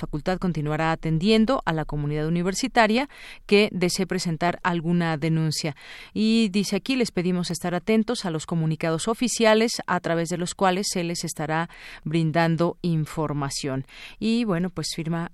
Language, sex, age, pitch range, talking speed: Spanish, female, 40-59, 160-200 Hz, 145 wpm